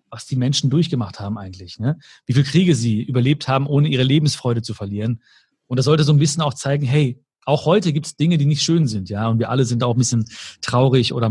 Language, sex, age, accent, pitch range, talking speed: German, male, 40-59, German, 120-155 Hz, 245 wpm